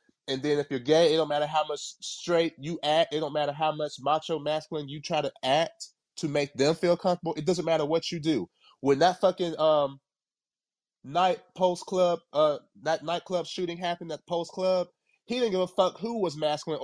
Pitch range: 150-185 Hz